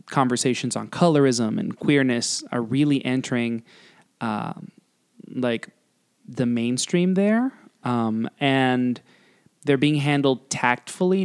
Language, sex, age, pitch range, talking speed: English, male, 20-39, 120-155 Hz, 100 wpm